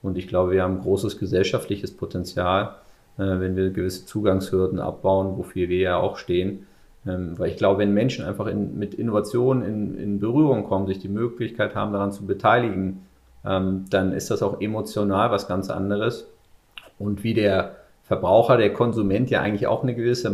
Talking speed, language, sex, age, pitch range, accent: 170 wpm, German, male, 30-49, 95-110 Hz, German